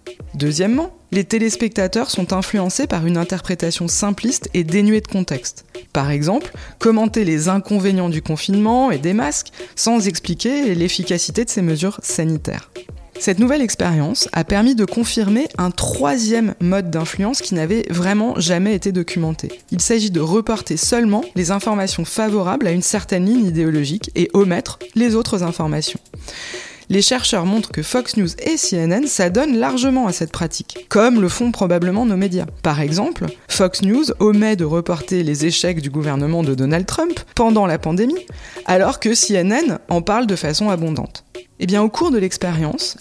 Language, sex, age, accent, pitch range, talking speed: French, female, 20-39, French, 170-220 Hz, 160 wpm